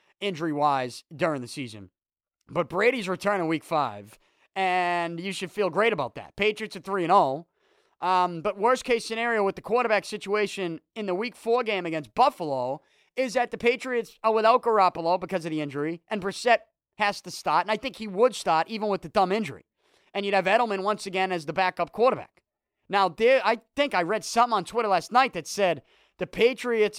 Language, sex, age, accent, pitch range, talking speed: English, male, 30-49, American, 185-250 Hz, 195 wpm